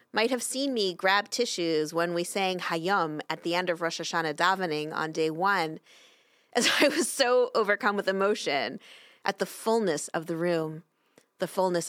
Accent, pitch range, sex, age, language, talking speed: American, 170-220 Hz, female, 30-49, English, 175 wpm